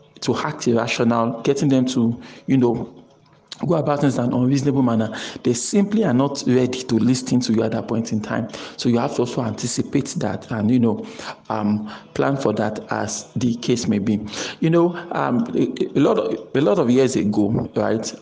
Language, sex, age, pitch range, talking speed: English, male, 50-69, 115-145 Hz, 200 wpm